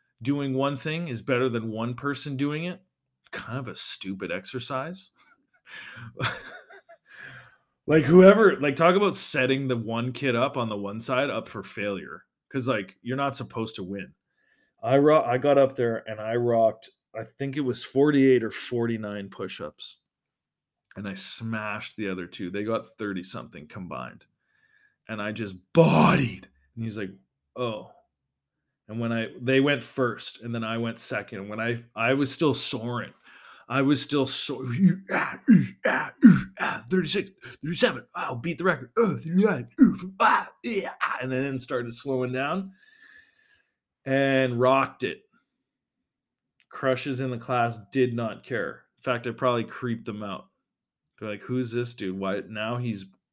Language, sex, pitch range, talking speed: English, male, 115-145 Hz, 160 wpm